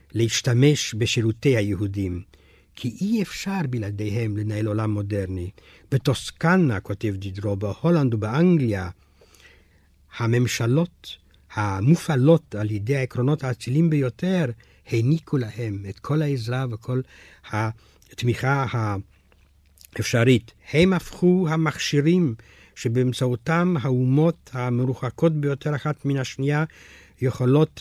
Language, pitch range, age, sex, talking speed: Hebrew, 100-140 Hz, 60-79, male, 90 wpm